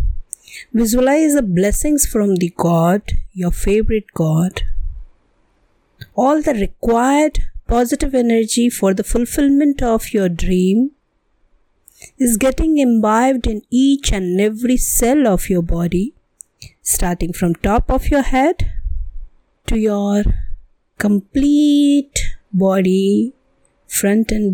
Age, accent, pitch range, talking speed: 50-69, native, 170-265 Hz, 105 wpm